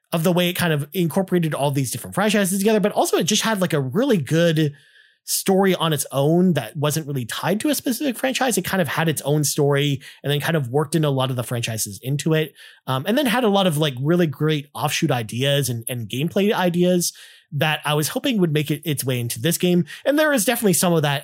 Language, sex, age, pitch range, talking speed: English, male, 30-49, 140-185 Hz, 250 wpm